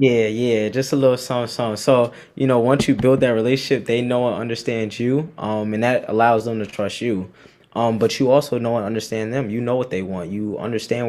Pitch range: 105-125 Hz